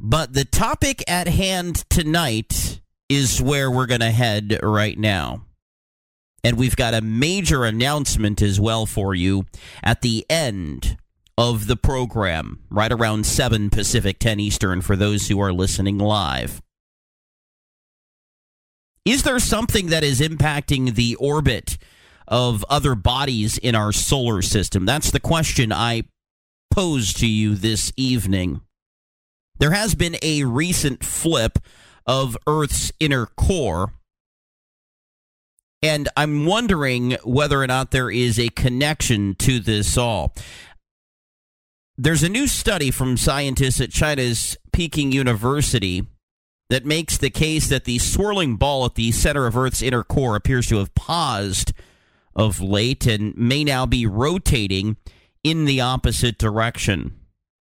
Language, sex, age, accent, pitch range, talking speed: English, male, 40-59, American, 105-140 Hz, 135 wpm